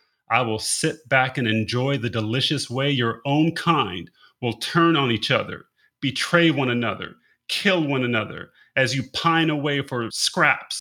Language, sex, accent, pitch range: English, male, American, 115-150 Hz